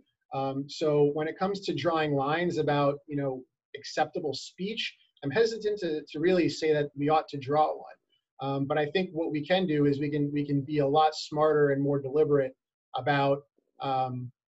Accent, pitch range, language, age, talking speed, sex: American, 135-155 Hz, English, 30-49, 195 wpm, male